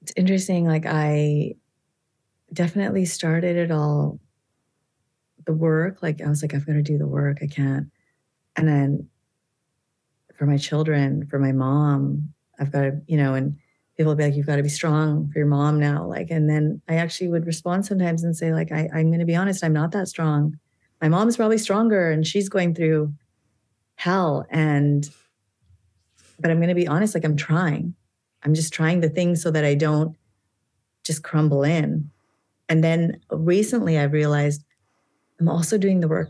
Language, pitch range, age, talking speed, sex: English, 145-170 Hz, 30-49, 185 wpm, female